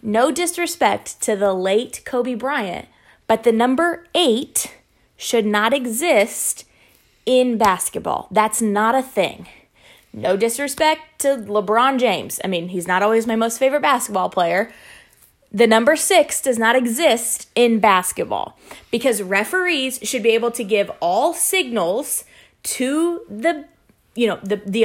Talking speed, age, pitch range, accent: 140 wpm, 20-39, 210-310 Hz, American